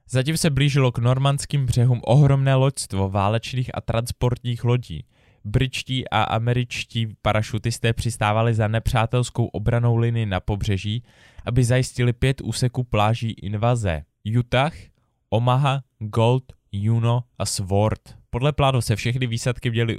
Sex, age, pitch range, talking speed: male, 20-39, 110-125 Hz, 125 wpm